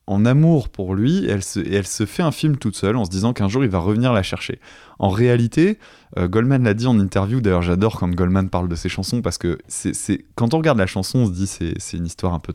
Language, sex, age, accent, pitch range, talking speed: French, male, 20-39, French, 95-120 Hz, 280 wpm